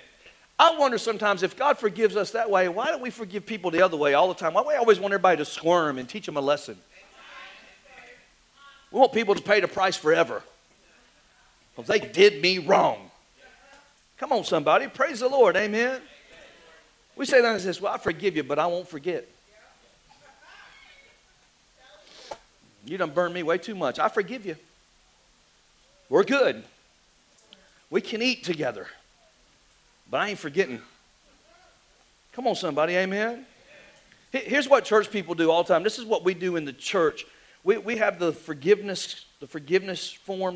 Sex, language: male, English